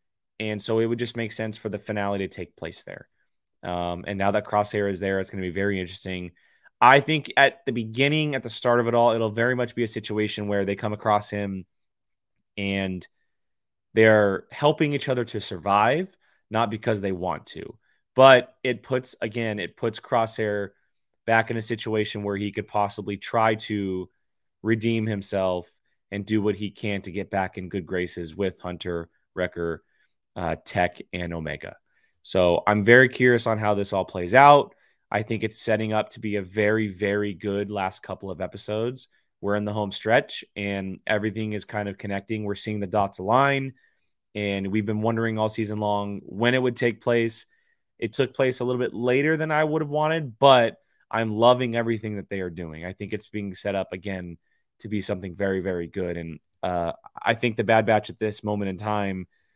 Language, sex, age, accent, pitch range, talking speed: English, male, 20-39, American, 100-115 Hz, 195 wpm